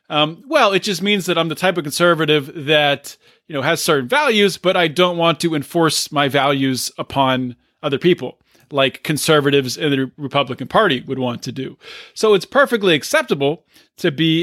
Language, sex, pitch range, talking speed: English, male, 140-175 Hz, 185 wpm